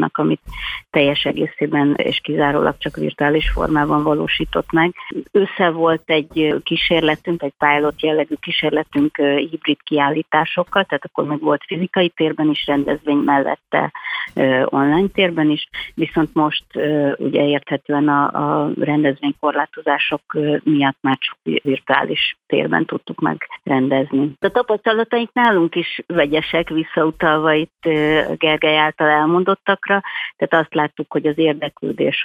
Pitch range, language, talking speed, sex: 145-160 Hz, Hungarian, 115 wpm, female